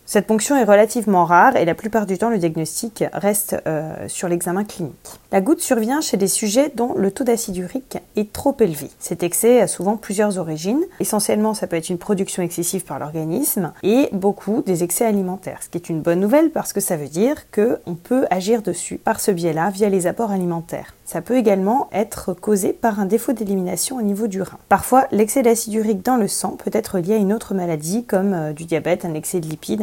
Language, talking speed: French, 215 wpm